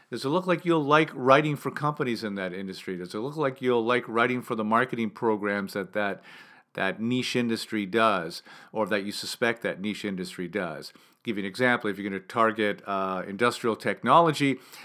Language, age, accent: English, 50-69, American